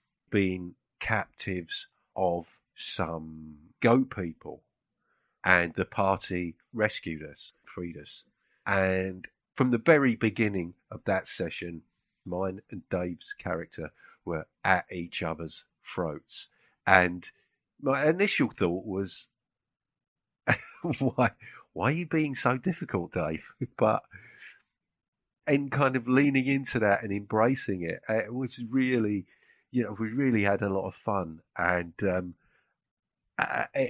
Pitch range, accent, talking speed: 85-115 Hz, British, 120 wpm